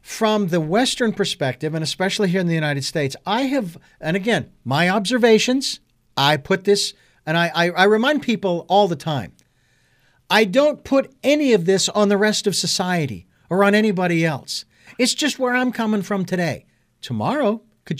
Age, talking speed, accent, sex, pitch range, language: 50-69, 175 wpm, American, male, 150-205 Hz, English